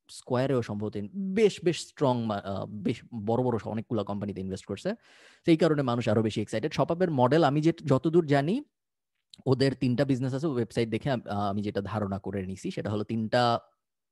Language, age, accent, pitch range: Bengali, 20-39, native, 105-130 Hz